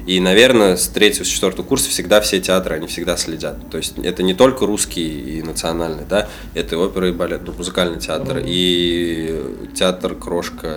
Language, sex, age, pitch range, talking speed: Russian, male, 20-39, 90-120 Hz, 180 wpm